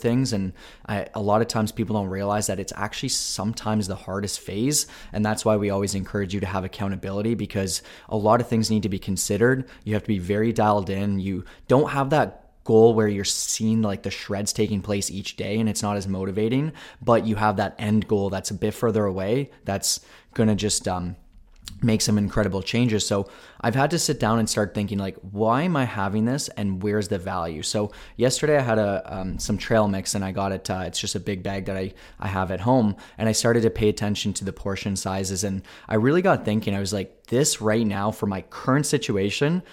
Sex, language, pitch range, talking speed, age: male, English, 100-115 Hz, 225 wpm, 20-39